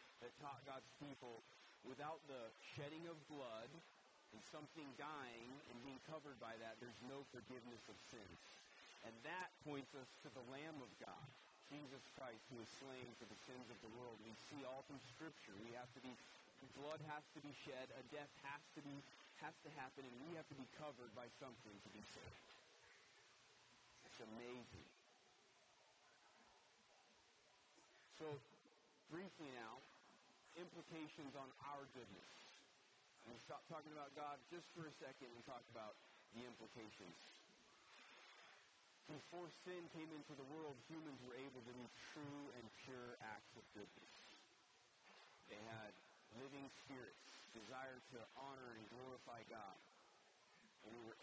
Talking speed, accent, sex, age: 150 wpm, American, male, 30-49